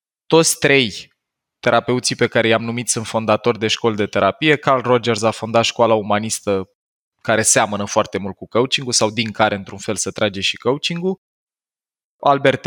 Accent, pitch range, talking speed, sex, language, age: native, 110-140 Hz, 165 wpm, male, Romanian, 20-39